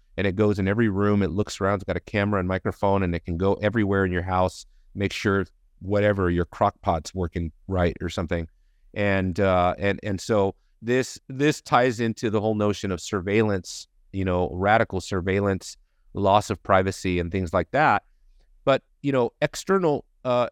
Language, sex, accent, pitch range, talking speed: English, male, American, 95-120 Hz, 180 wpm